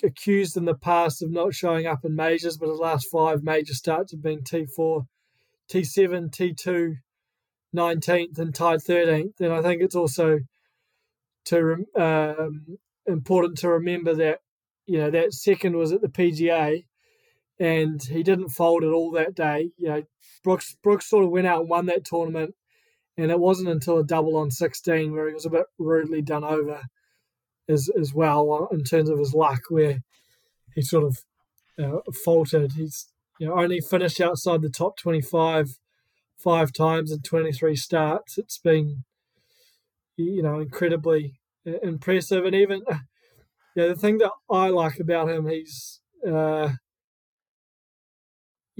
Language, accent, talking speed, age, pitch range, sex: English, Australian, 160 wpm, 20-39, 155-180 Hz, male